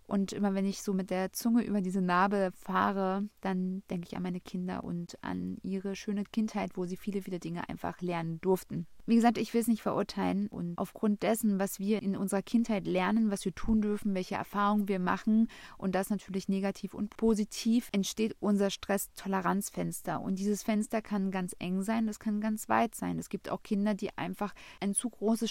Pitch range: 190-215 Hz